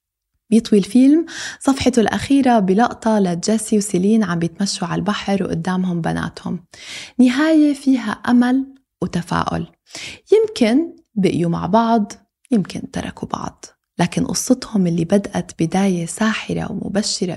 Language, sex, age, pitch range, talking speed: Arabic, female, 20-39, 180-245 Hz, 105 wpm